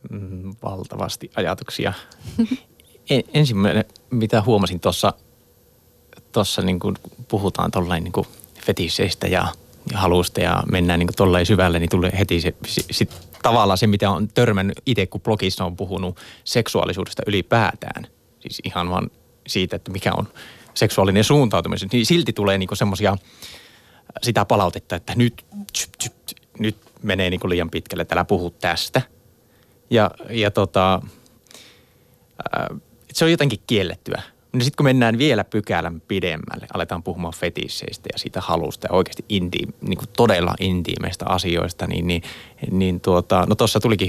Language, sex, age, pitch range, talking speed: Finnish, male, 20-39, 90-115 Hz, 140 wpm